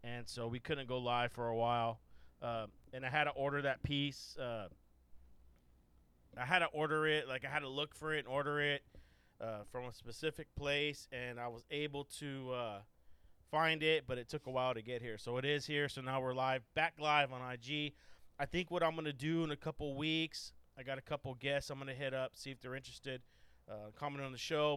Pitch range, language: 115-140 Hz, English